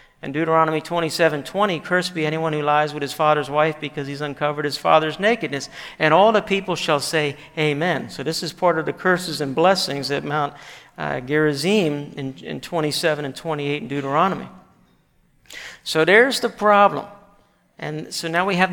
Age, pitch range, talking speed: 50-69, 155-210 Hz, 185 wpm